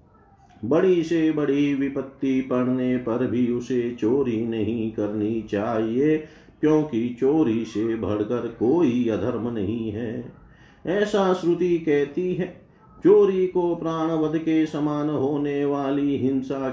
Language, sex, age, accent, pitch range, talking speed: Hindi, male, 50-69, native, 120-155 Hz, 120 wpm